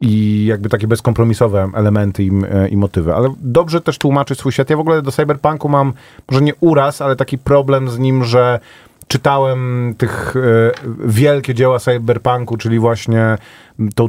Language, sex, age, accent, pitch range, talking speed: Polish, male, 30-49, native, 100-130 Hz, 160 wpm